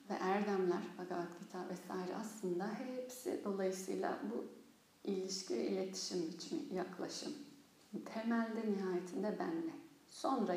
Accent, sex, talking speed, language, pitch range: native, female, 95 wpm, Turkish, 190-245 Hz